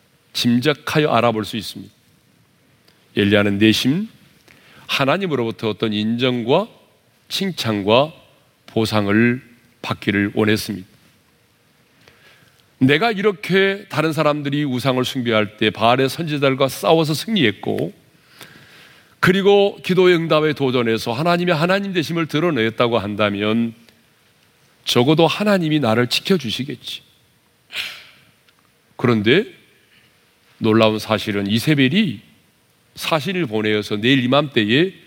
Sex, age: male, 40-59